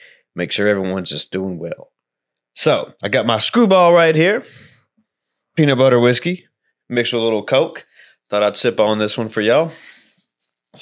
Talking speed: 165 wpm